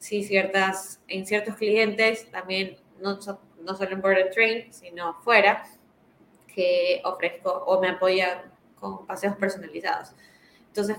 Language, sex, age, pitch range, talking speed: Spanish, female, 20-39, 180-205 Hz, 135 wpm